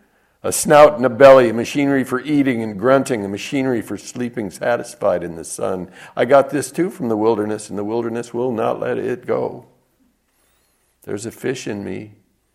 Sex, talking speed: male, 185 wpm